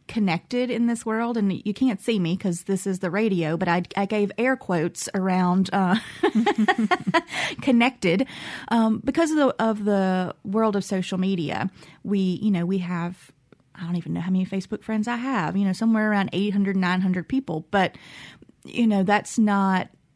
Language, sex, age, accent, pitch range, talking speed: English, female, 30-49, American, 185-220 Hz, 175 wpm